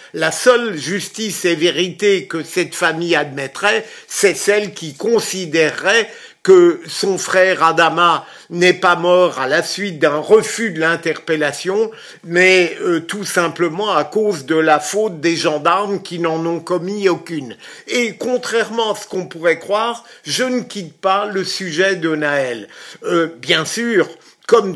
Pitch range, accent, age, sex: 170-225 Hz, French, 50-69, male